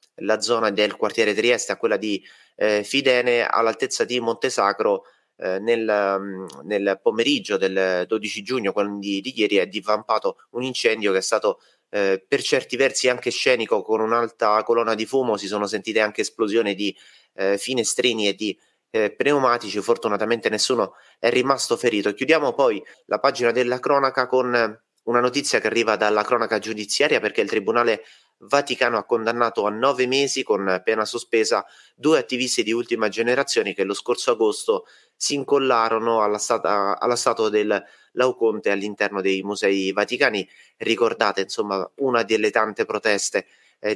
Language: Italian